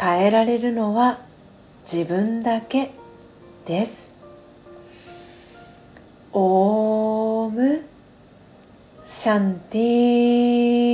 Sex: female